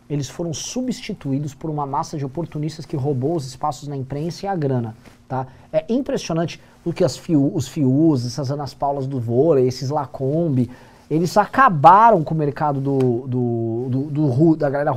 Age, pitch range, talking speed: 20-39, 140-225 Hz, 180 wpm